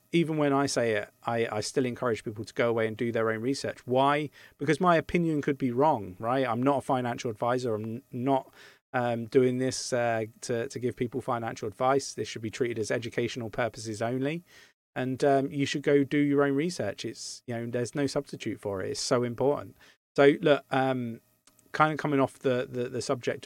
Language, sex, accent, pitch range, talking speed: English, male, British, 115-140 Hz, 210 wpm